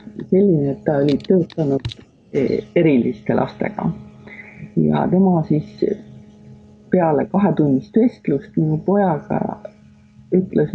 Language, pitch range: English, 150-215 Hz